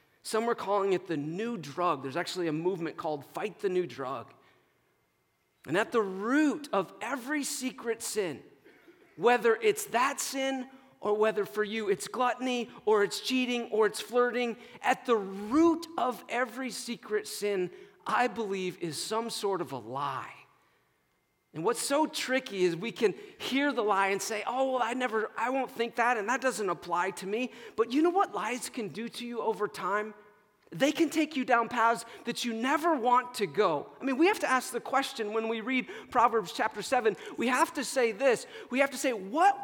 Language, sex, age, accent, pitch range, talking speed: English, male, 40-59, American, 210-270 Hz, 190 wpm